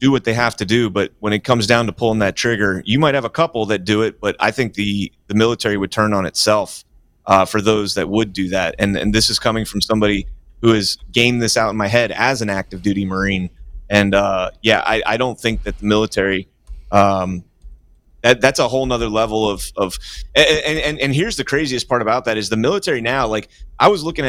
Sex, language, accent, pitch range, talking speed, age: male, English, American, 100-125 Hz, 235 wpm, 30-49